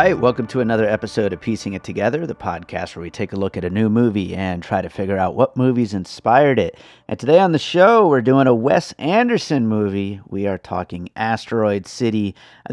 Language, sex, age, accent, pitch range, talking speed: English, male, 30-49, American, 95-130 Hz, 210 wpm